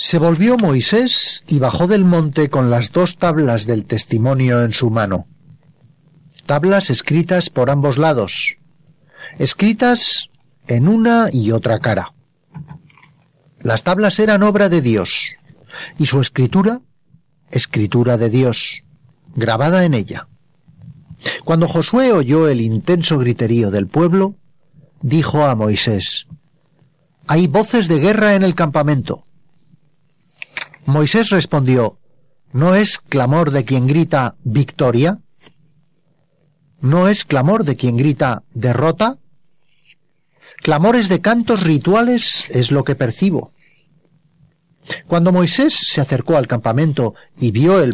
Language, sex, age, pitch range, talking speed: Spanish, male, 40-59, 135-175 Hz, 115 wpm